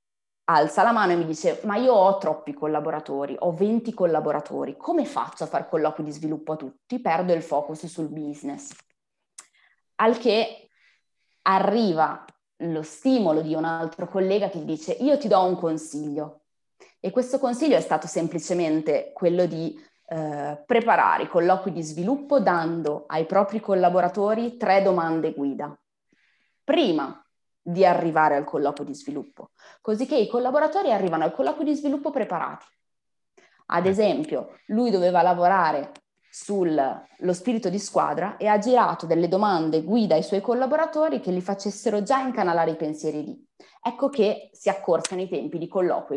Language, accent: Italian, native